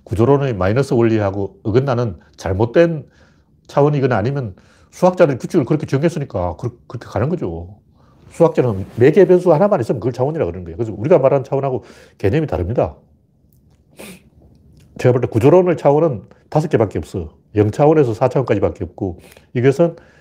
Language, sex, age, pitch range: Korean, male, 40-59, 110-170 Hz